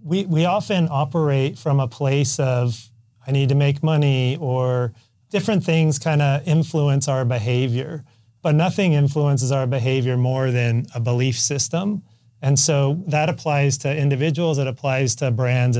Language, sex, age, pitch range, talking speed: English, male, 30-49, 125-145 Hz, 155 wpm